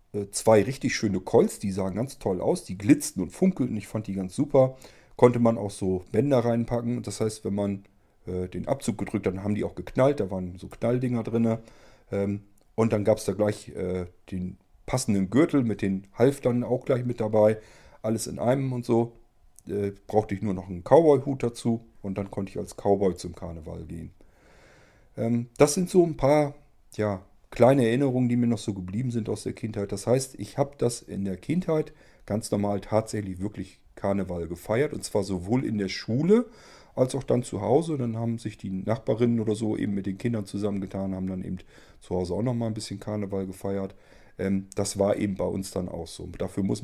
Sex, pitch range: male, 95-120 Hz